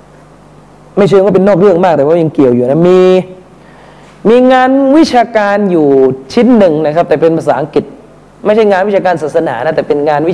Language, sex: Thai, male